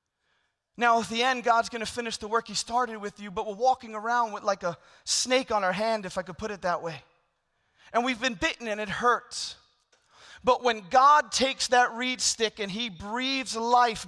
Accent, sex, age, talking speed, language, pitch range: American, male, 30-49, 210 wpm, English, 225-255 Hz